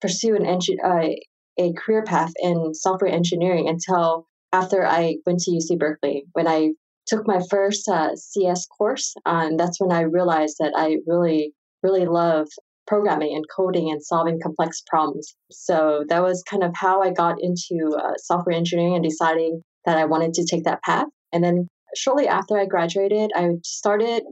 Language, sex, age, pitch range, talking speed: English, female, 20-39, 170-205 Hz, 175 wpm